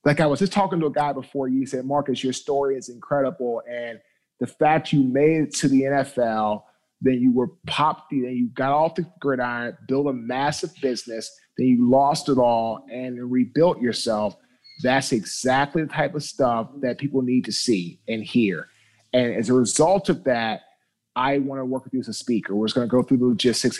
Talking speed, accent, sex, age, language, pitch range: 210 wpm, American, male, 30-49, English, 120-150 Hz